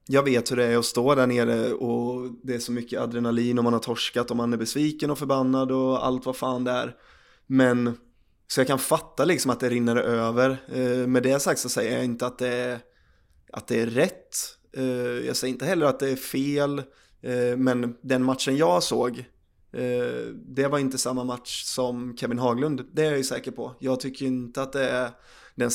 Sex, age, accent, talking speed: male, 20-39, native, 205 wpm